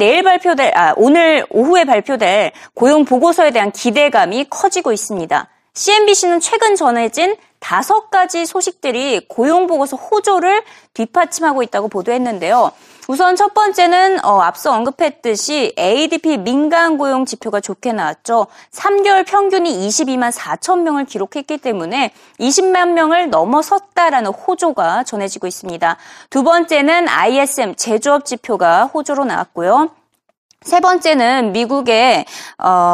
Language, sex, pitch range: Korean, female, 230-350 Hz